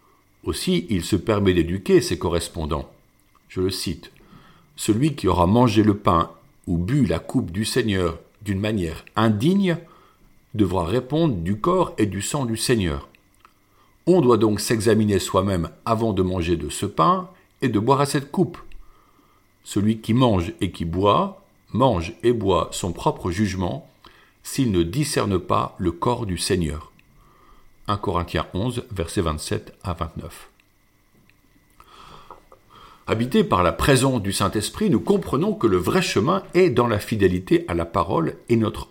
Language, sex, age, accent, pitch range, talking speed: French, male, 50-69, French, 90-130 Hz, 155 wpm